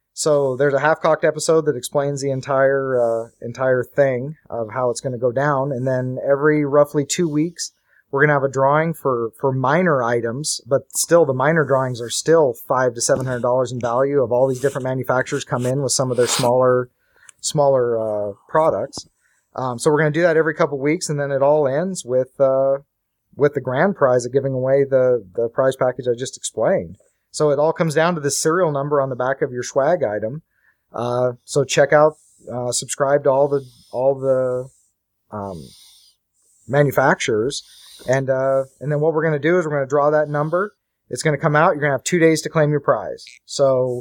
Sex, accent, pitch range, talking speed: male, American, 125-150 Hz, 205 wpm